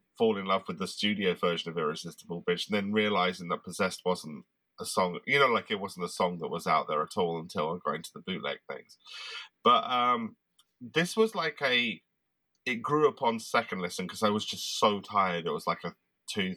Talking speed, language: 215 wpm, English